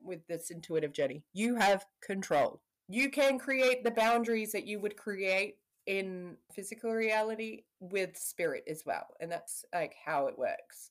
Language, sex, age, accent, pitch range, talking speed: English, female, 20-39, Australian, 170-215 Hz, 160 wpm